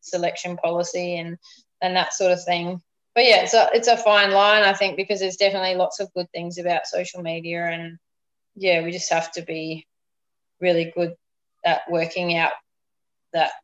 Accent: Australian